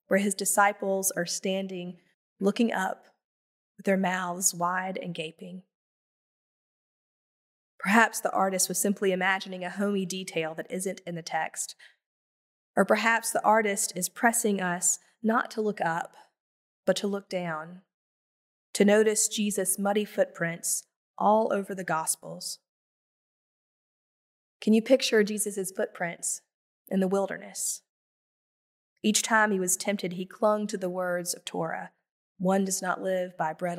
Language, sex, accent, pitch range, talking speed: English, female, American, 180-210 Hz, 135 wpm